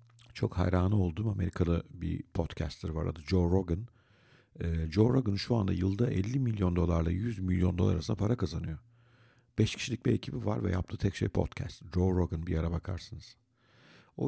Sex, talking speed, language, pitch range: male, 170 wpm, Turkish, 90-120 Hz